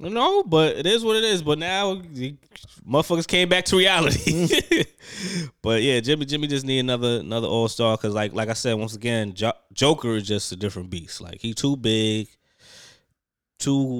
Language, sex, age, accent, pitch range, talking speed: English, male, 20-39, American, 100-140 Hz, 190 wpm